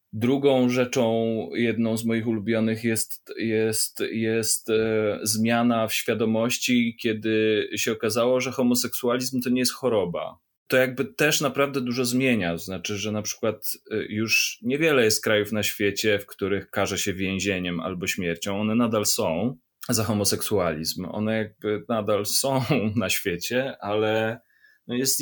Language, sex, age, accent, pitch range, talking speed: Polish, male, 20-39, native, 105-120 Hz, 140 wpm